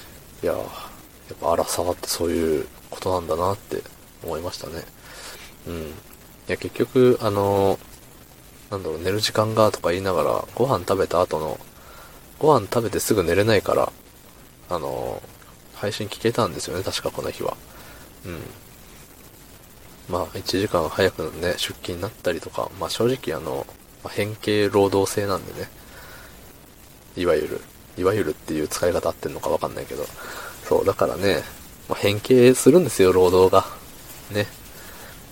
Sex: male